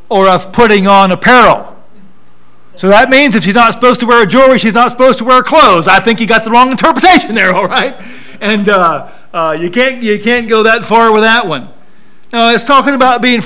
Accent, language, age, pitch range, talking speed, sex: American, English, 50-69, 170-230 Hz, 225 wpm, male